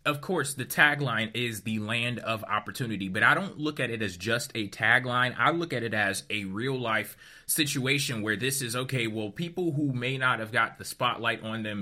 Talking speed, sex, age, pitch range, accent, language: 215 wpm, male, 20-39, 115-155 Hz, American, English